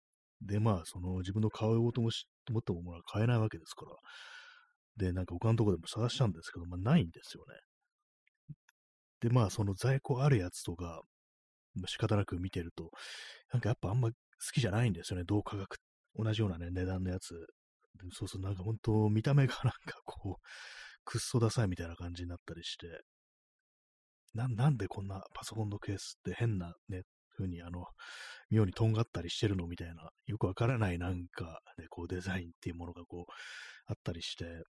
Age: 30-49